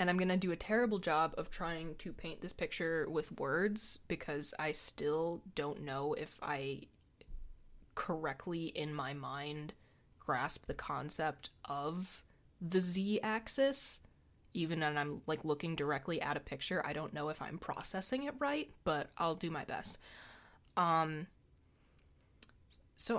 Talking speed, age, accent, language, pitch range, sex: 150 wpm, 20-39, American, English, 145-200 Hz, female